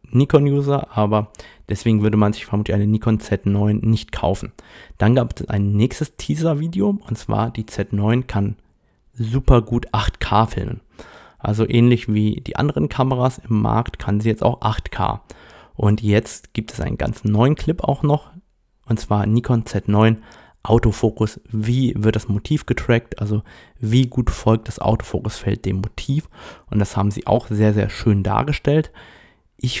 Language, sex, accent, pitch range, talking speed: German, male, German, 105-125 Hz, 155 wpm